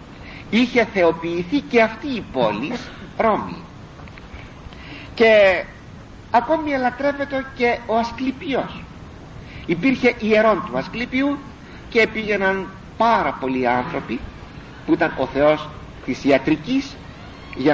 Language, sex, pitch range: Greek, male, 140-235 Hz